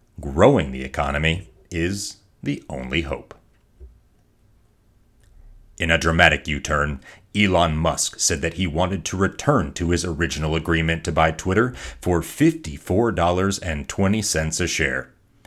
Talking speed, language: 115 wpm, English